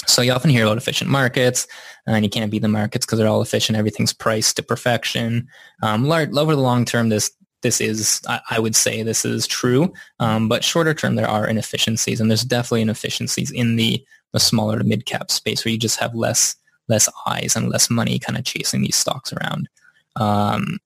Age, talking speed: 20-39, 205 wpm